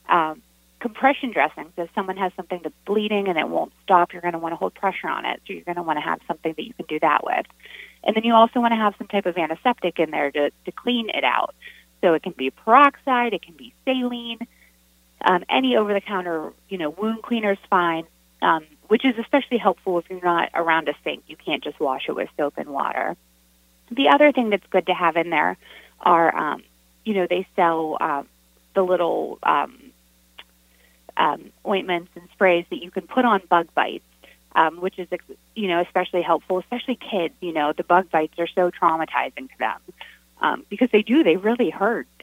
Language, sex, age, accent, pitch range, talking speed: English, female, 30-49, American, 160-205 Hz, 210 wpm